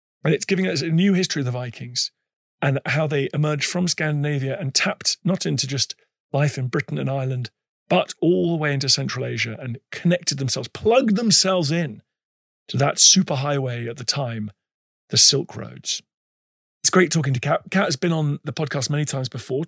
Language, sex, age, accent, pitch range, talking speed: English, male, 40-59, British, 130-170 Hz, 190 wpm